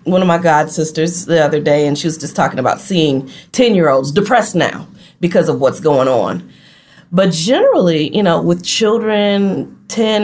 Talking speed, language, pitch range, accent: 190 wpm, English, 160-200 Hz, American